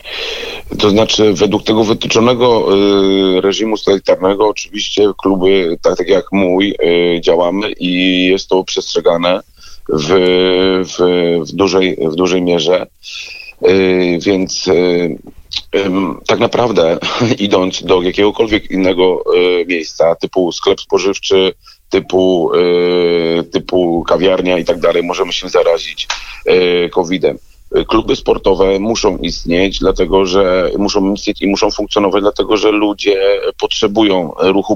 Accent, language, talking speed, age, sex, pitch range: native, Polish, 120 wpm, 40-59, male, 95-110 Hz